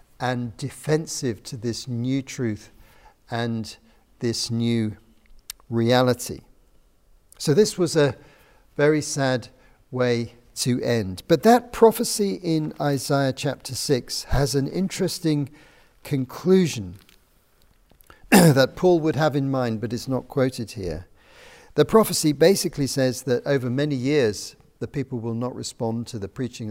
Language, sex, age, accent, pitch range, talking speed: English, male, 50-69, British, 115-150 Hz, 130 wpm